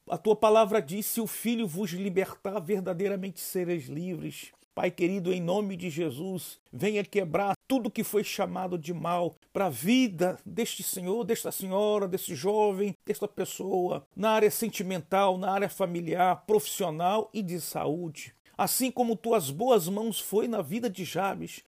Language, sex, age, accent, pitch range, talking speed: Portuguese, male, 50-69, Brazilian, 180-220 Hz, 160 wpm